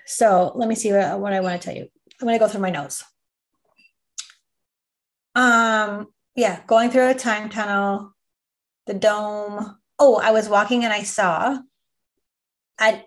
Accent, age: American, 30-49